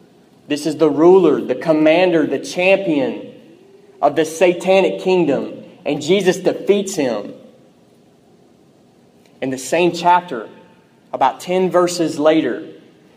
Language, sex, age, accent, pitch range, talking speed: English, male, 30-49, American, 160-215 Hz, 110 wpm